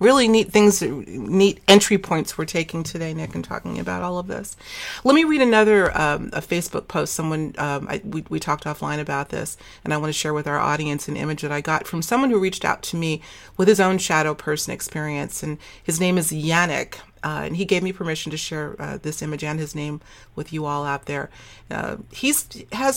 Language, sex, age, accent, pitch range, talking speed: English, female, 40-59, American, 150-195 Hz, 225 wpm